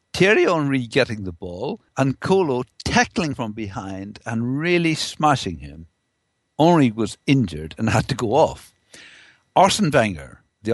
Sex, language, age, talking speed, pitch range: male, English, 60-79, 140 wpm, 110-175 Hz